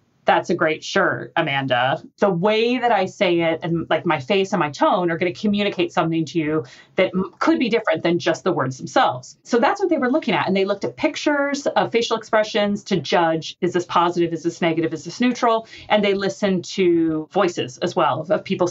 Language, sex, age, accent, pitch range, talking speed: English, female, 30-49, American, 165-210 Hz, 220 wpm